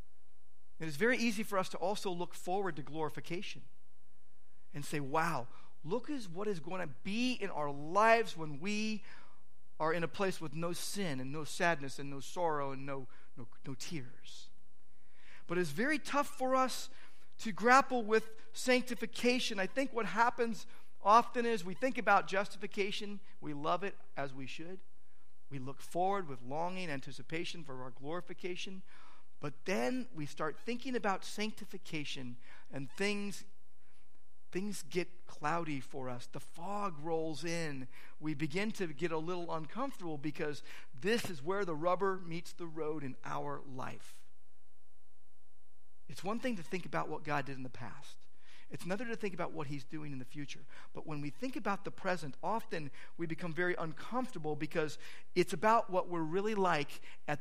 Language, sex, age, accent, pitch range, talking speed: English, male, 50-69, American, 140-200 Hz, 170 wpm